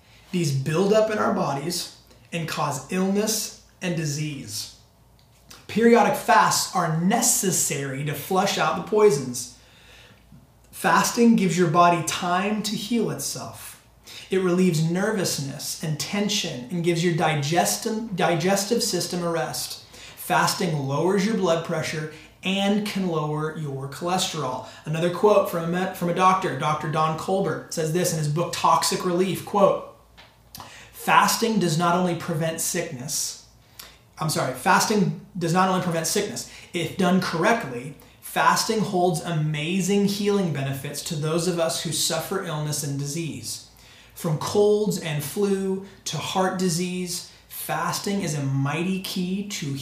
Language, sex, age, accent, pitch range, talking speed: English, male, 20-39, American, 140-185 Hz, 135 wpm